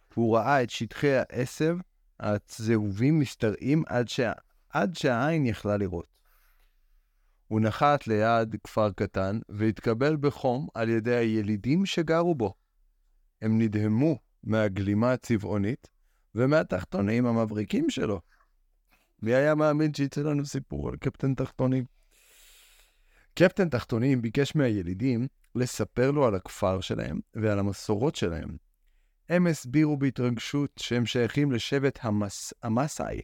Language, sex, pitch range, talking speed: Hebrew, male, 105-140 Hz, 110 wpm